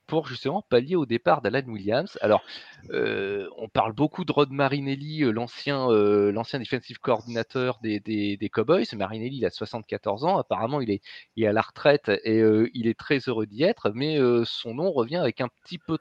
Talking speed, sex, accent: 200 wpm, male, French